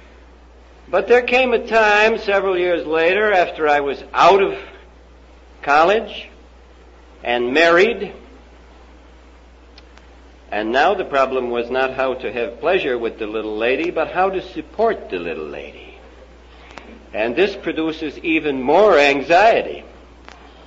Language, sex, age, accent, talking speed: English, male, 60-79, American, 125 wpm